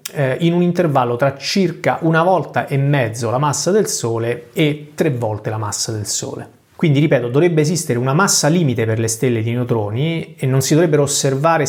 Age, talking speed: 30-49, 190 wpm